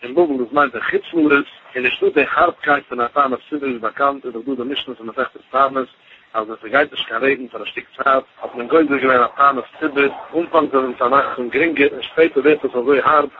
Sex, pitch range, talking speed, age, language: male, 120-145 Hz, 160 wpm, 50-69, English